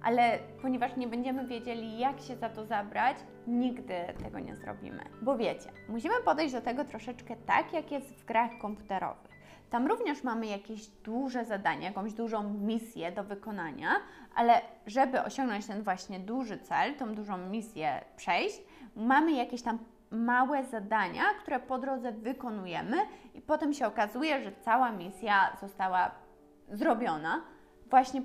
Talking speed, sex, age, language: 145 wpm, female, 20-39, Polish